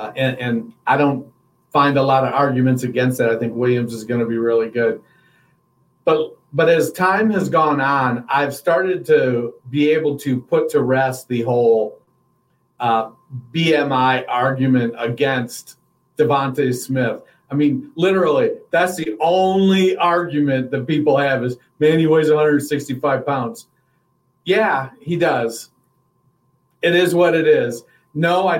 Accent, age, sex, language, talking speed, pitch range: American, 50-69, male, English, 150 wpm, 130-155 Hz